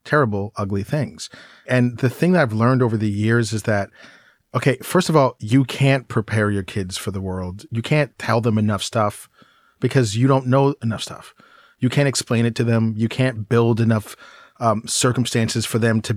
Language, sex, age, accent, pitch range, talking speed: English, male, 40-59, American, 110-130 Hz, 195 wpm